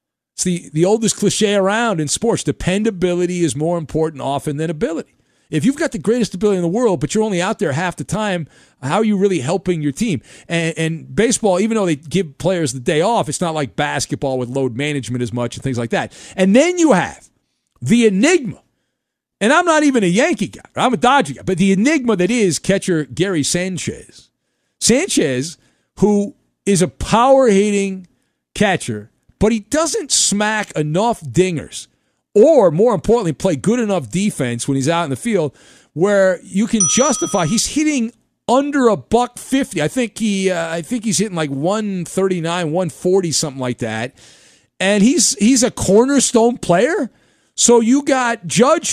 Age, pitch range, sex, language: 40-59, 165-230 Hz, male, English